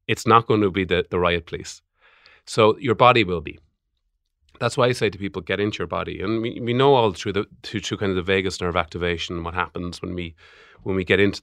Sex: male